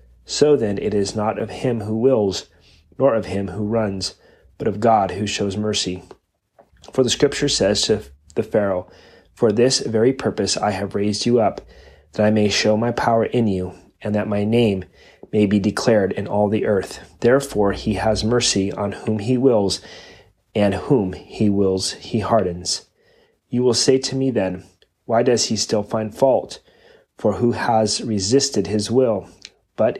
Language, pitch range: English, 100-115 Hz